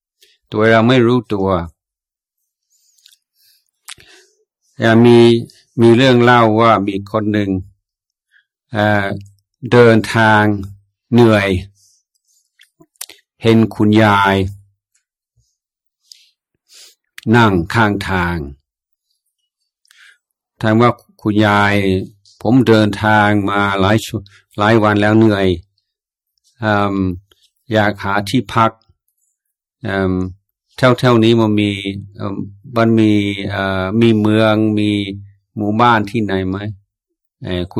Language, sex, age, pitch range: Thai, male, 60-79, 100-115 Hz